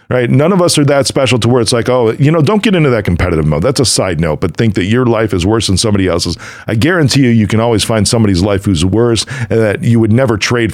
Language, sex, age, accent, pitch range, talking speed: English, male, 40-59, American, 110-160 Hz, 280 wpm